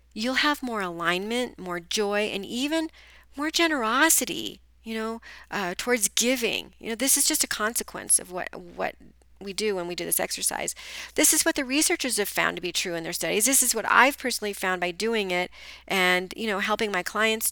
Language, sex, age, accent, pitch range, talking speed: English, female, 40-59, American, 190-240 Hz, 205 wpm